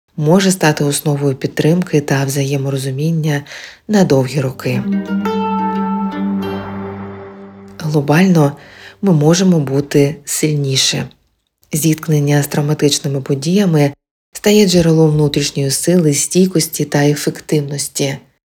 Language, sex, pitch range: Ukrainian, female, 140-170 Hz